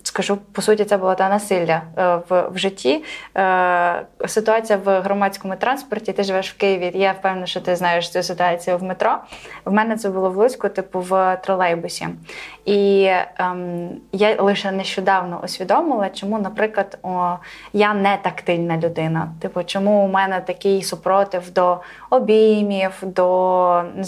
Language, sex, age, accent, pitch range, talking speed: Ukrainian, female, 20-39, native, 180-205 Hz, 150 wpm